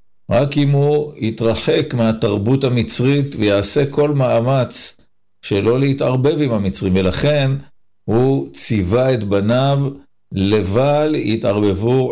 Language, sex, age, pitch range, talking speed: Hebrew, male, 50-69, 100-135 Hz, 100 wpm